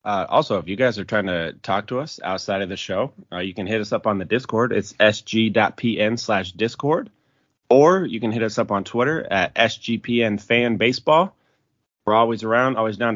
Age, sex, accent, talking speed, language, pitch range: 30-49, male, American, 195 wpm, English, 100-120 Hz